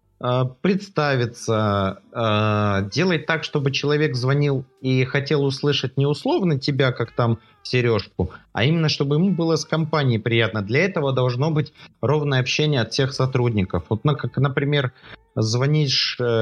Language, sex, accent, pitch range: Russian, male, native, 120-150 Hz